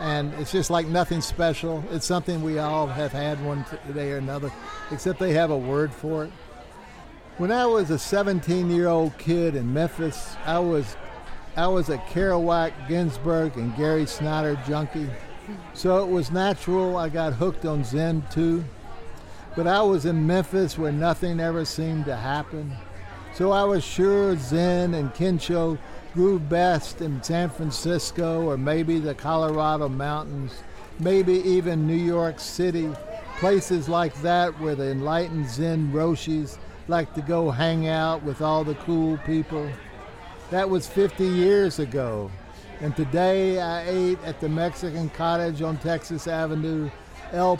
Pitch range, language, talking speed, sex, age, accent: 150-175 Hz, English, 155 wpm, male, 60-79, American